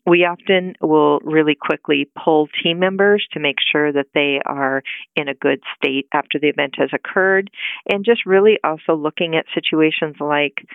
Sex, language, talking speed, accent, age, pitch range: female, English, 175 wpm, American, 50-69, 145-180 Hz